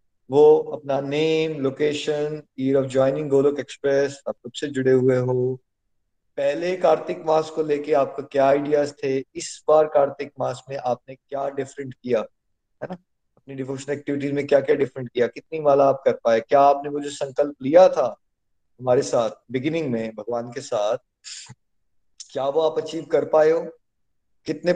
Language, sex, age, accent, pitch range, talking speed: Hindi, male, 20-39, native, 130-160 Hz, 160 wpm